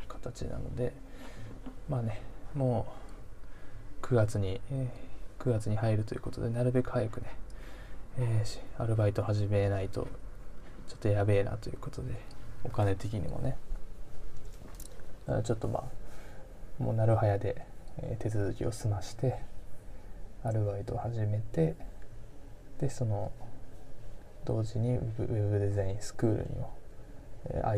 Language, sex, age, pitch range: Japanese, male, 20-39, 105-125 Hz